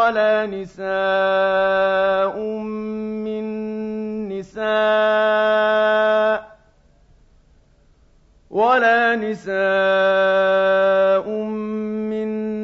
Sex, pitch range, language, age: male, 195-235 Hz, Arabic, 50-69